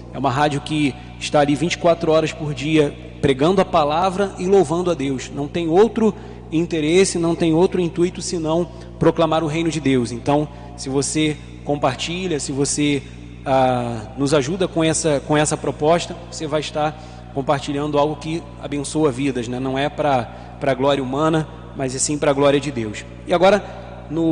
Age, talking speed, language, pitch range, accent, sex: 20-39, 170 wpm, Portuguese, 135-170 Hz, Brazilian, male